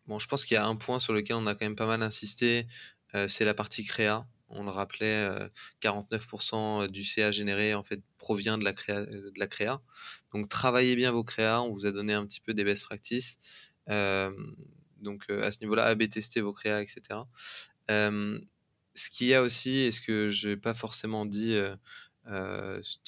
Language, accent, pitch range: French, French, 105-115 Hz